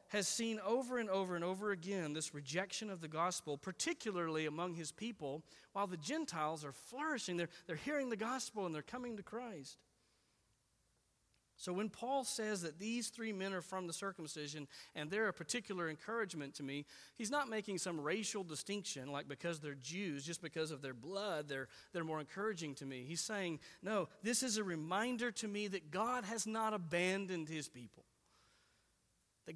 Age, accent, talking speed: 40-59, American, 180 wpm